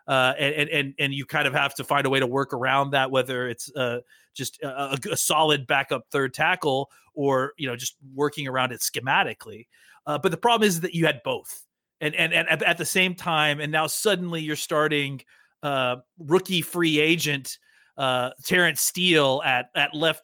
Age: 30-49